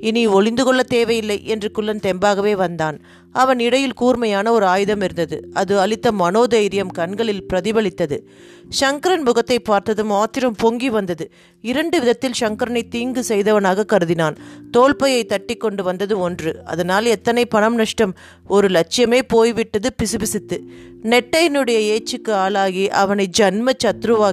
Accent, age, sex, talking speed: native, 30-49, female, 120 wpm